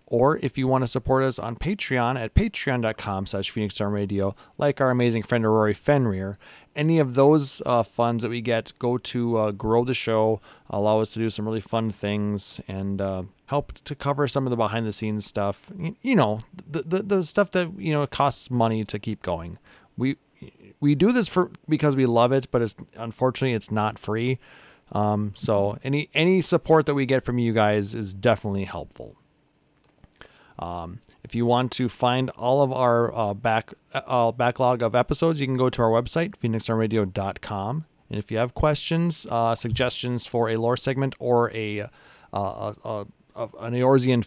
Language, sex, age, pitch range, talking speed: English, male, 30-49, 110-140 Hz, 180 wpm